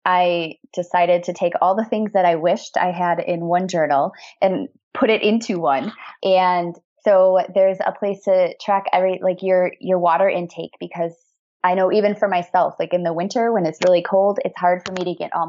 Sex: female